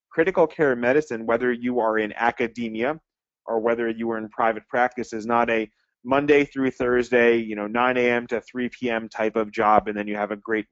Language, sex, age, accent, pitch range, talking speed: English, male, 30-49, American, 115-130 Hz, 205 wpm